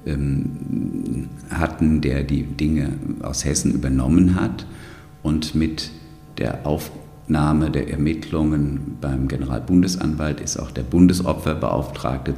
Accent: German